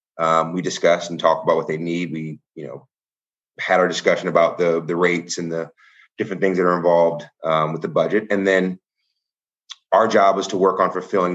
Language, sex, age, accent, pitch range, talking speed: English, male, 30-49, American, 85-105 Hz, 205 wpm